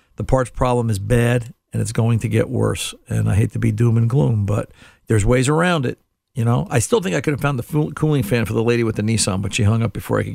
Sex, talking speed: male, 285 wpm